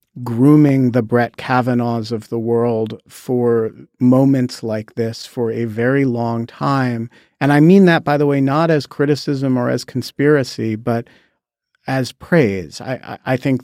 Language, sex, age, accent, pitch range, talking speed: English, male, 50-69, American, 120-140 Hz, 160 wpm